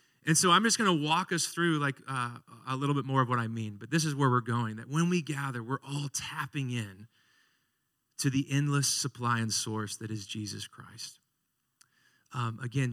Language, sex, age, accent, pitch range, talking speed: English, male, 30-49, American, 115-140 Hz, 210 wpm